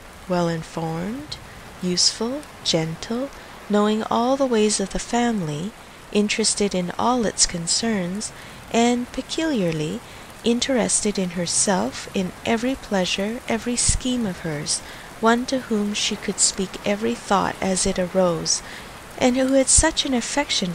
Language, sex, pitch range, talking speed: English, female, 180-235 Hz, 125 wpm